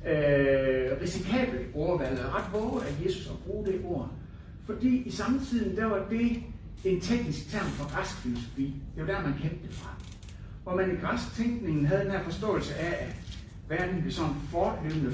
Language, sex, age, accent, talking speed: Danish, male, 60-79, native, 180 wpm